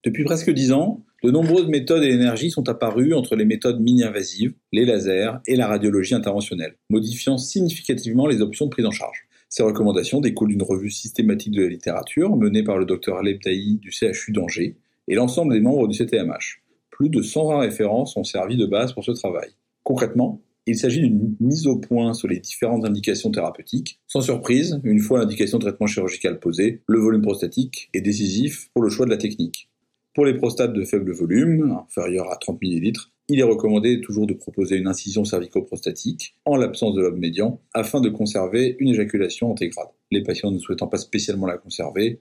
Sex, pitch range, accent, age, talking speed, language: male, 105-130 Hz, French, 40-59, 190 wpm, French